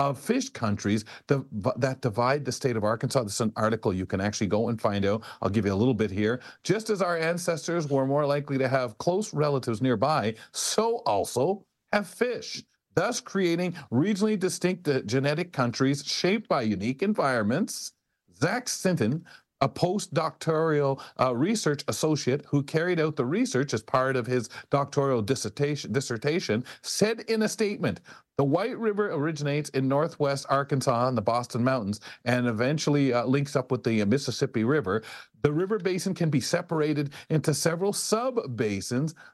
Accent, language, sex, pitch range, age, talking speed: American, English, male, 125-165 Hz, 40-59, 165 wpm